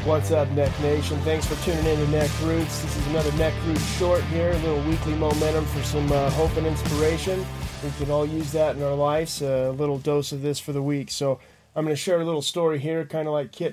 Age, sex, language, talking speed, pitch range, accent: 30-49, male, English, 255 wpm, 140-155 Hz, American